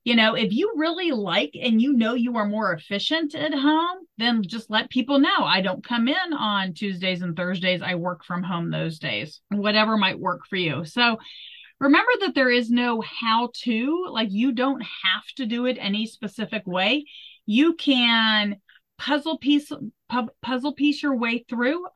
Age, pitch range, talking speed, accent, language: 30-49, 205-265 Hz, 185 wpm, American, English